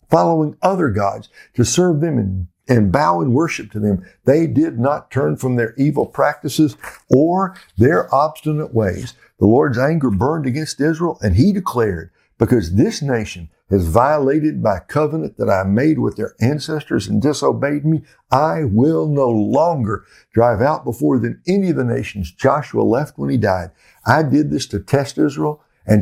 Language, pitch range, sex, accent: English, 105-150 Hz, male, American